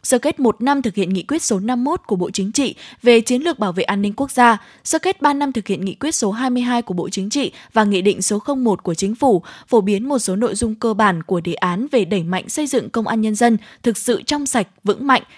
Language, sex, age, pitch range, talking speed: Vietnamese, female, 10-29, 200-260 Hz, 275 wpm